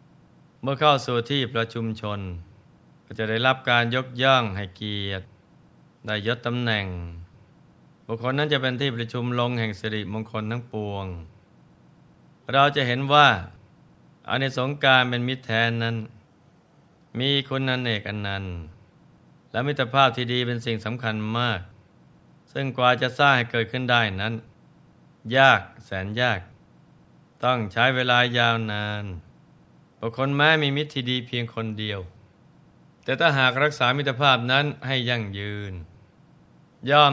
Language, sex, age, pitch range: Thai, male, 20-39, 110-130 Hz